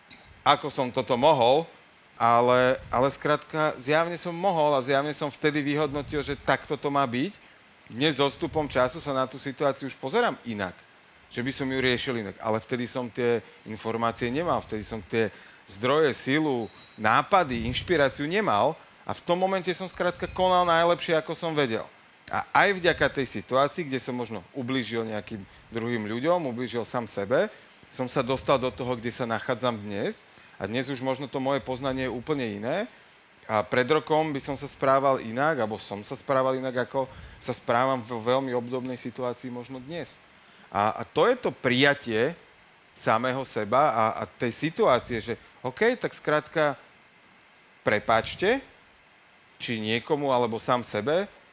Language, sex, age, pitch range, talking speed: Slovak, male, 40-59, 120-145 Hz, 165 wpm